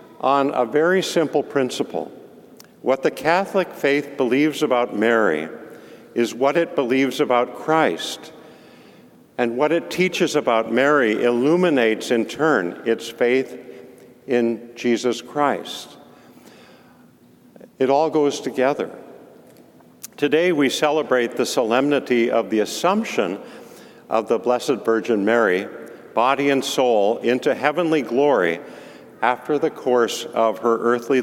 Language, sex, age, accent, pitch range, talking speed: English, male, 50-69, American, 120-155 Hz, 115 wpm